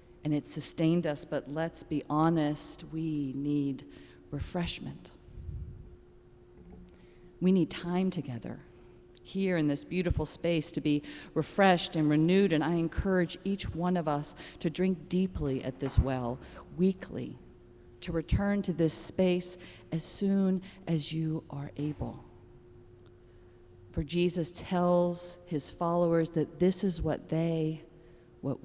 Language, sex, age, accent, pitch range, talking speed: English, female, 40-59, American, 120-175 Hz, 130 wpm